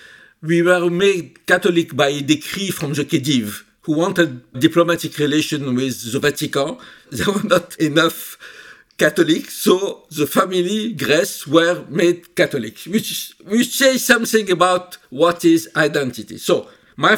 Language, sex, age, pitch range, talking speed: English, male, 60-79, 135-175 Hz, 135 wpm